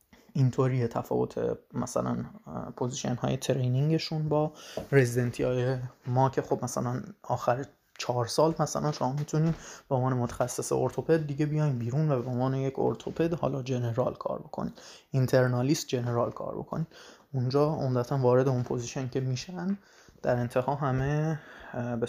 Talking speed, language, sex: 135 wpm, Persian, male